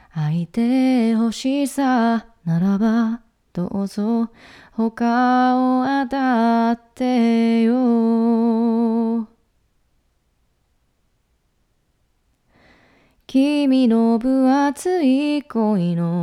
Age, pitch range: 20-39, 225-290 Hz